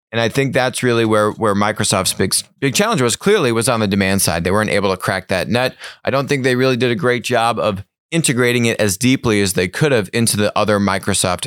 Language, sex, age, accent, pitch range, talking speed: English, male, 30-49, American, 100-120 Hz, 245 wpm